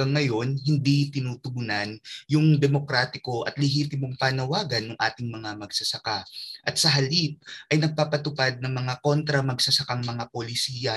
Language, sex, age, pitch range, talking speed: Filipino, male, 20-39, 120-150 Hz, 125 wpm